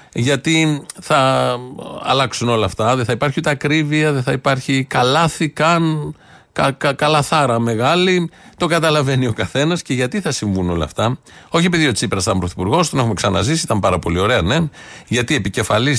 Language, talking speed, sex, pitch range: Greek, 165 wpm, male, 110-150 Hz